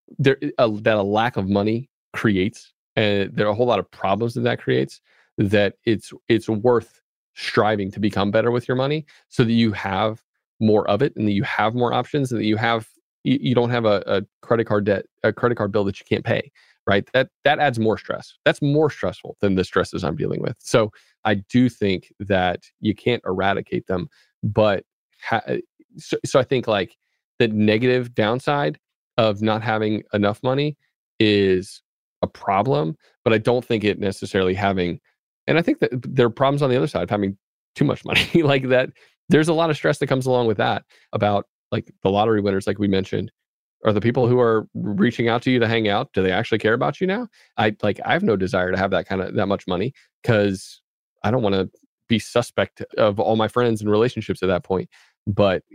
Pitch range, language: 100-125 Hz, English